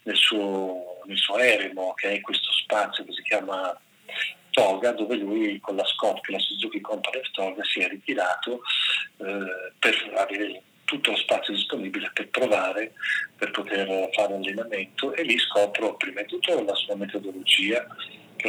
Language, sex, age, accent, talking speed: Italian, male, 40-59, native, 155 wpm